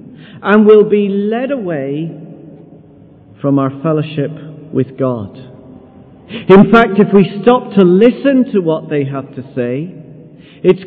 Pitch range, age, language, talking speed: 135-185 Hz, 50-69, English, 130 wpm